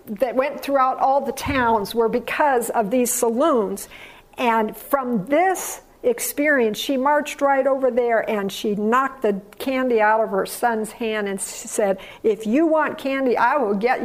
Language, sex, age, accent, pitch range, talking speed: English, female, 50-69, American, 210-260 Hz, 165 wpm